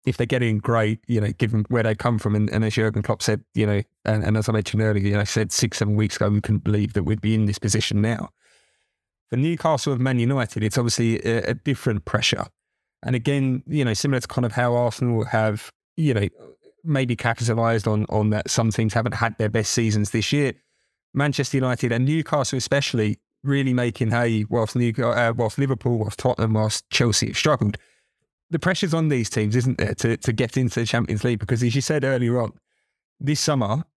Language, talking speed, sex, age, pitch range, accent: English, 215 wpm, male, 20-39, 110-130 Hz, British